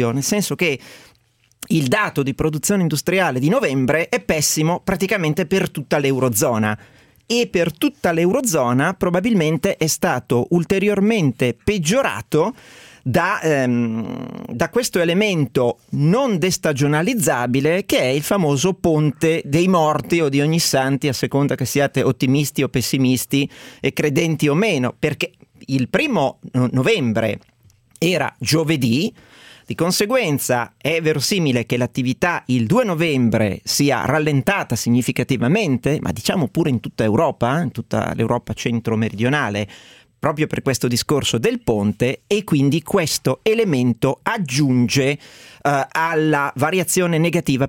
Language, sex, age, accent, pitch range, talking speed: Italian, male, 40-59, native, 130-175 Hz, 120 wpm